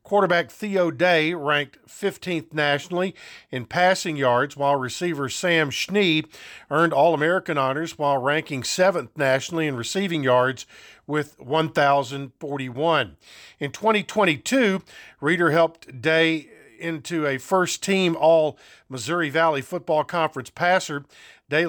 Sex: male